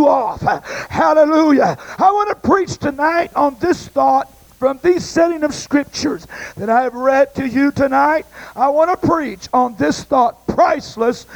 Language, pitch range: English, 300-360 Hz